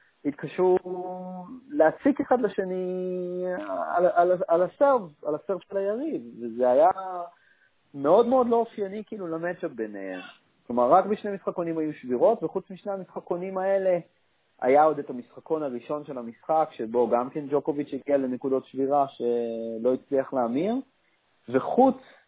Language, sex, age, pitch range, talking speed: Hebrew, male, 30-49, 115-180 Hz, 130 wpm